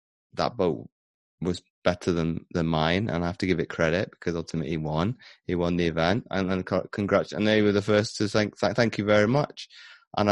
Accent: British